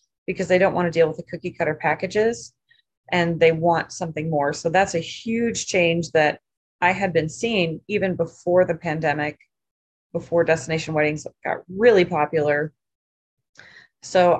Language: English